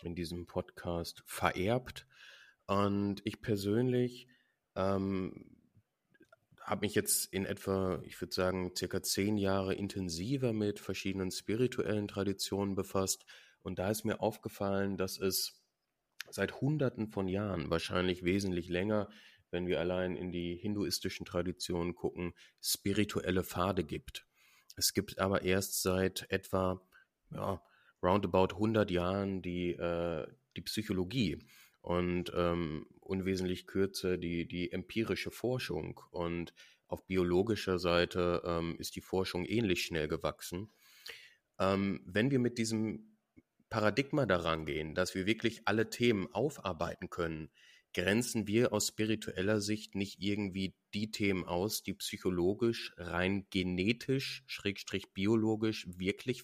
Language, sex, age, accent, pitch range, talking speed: German, male, 30-49, German, 90-105 Hz, 120 wpm